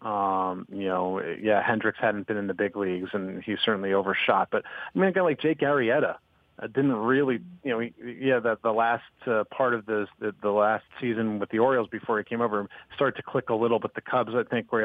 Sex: male